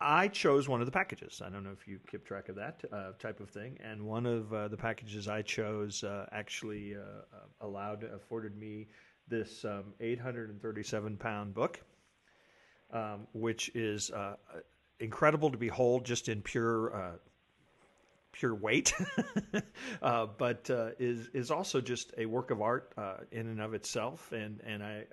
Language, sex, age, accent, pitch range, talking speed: English, male, 40-59, American, 105-120 Hz, 165 wpm